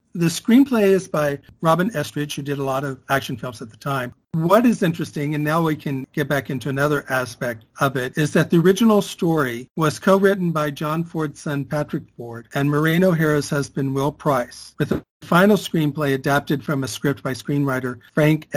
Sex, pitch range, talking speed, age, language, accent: male, 130-160 Hz, 195 wpm, 50-69, English, American